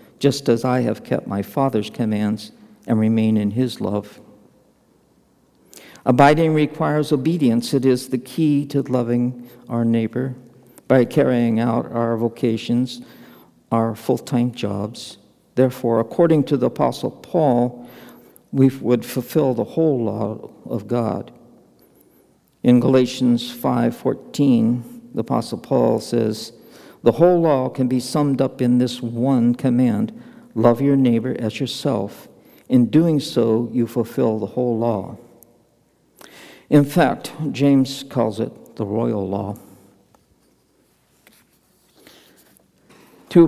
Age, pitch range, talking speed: 60-79, 115-135 Hz, 120 wpm